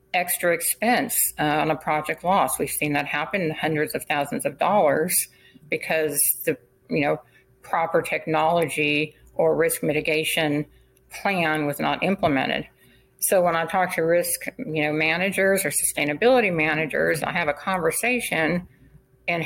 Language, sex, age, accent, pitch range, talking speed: English, female, 50-69, American, 150-180 Hz, 140 wpm